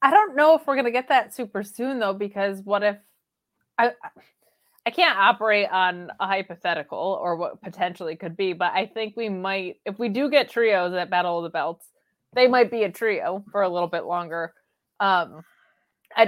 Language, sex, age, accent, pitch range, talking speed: English, female, 20-39, American, 190-235 Hz, 200 wpm